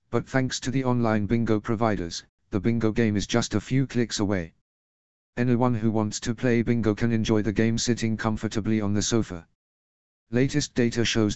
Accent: British